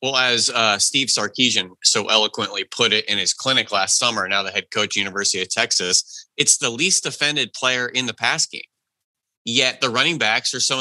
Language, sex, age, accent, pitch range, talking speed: English, male, 30-49, American, 100-125 Hz, 200 wpm